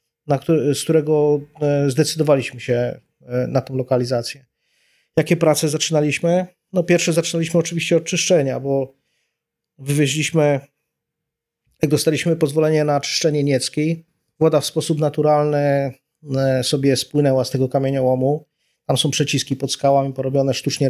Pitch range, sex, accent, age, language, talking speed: 130-150 Hz, male, native, 30-49, Polish, 120 wpm